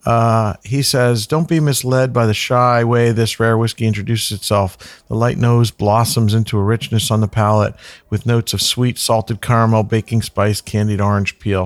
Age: 50-69